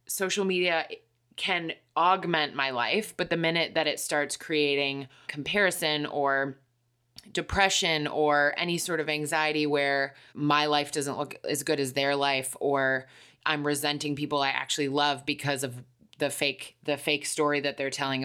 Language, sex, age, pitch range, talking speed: English, female, 20-39, 135-155 Hz, 160 wpm